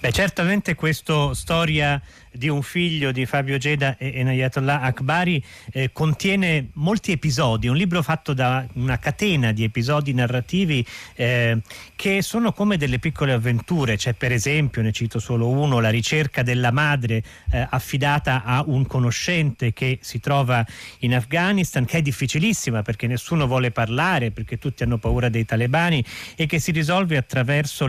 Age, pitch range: 40-59, 120-155 Hz